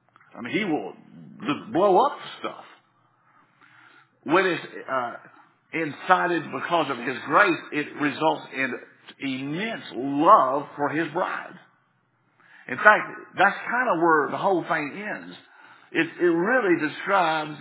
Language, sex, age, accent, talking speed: English, male, 50-69, American, 125 wpm